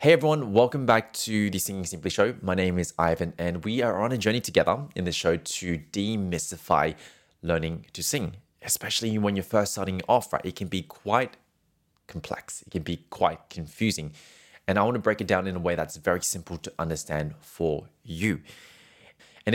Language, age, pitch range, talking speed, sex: English, 20-39, 85-110 Hz, 190 wpm, male